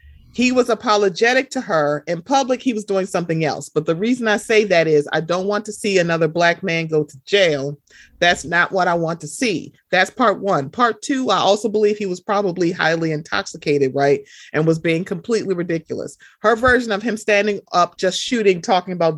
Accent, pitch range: American, 160-210 Hz